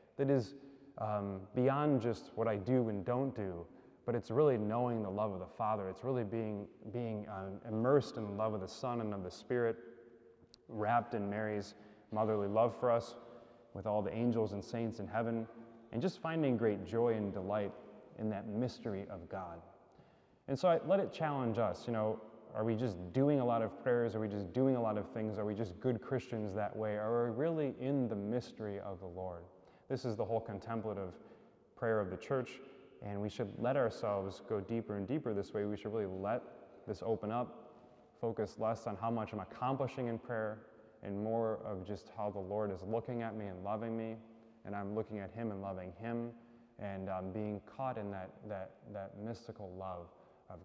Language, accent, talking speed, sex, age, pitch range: English, American, 205 wpm, male, 20-39, 105-120 Hz